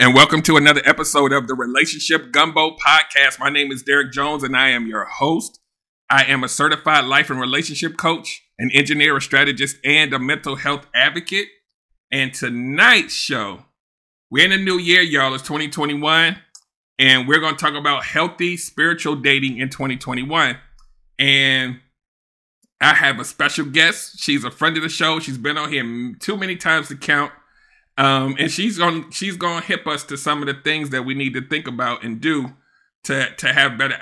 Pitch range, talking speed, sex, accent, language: 135-155 Hz, 185 wpm, male, American, English